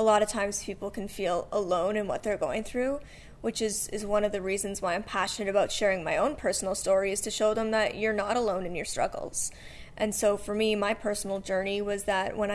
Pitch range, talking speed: 200-220 Hz, 240 wpm